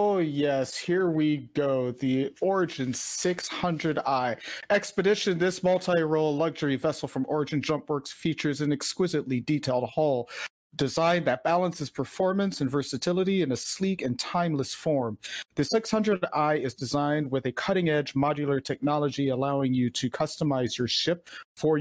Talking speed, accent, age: 135 wpm, American, 40-59